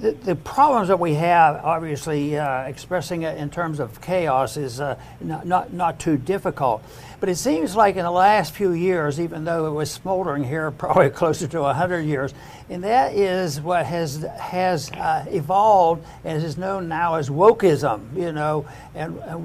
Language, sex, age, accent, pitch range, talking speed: English, male, 60-79, American, 155-195 Hz, 180 wpm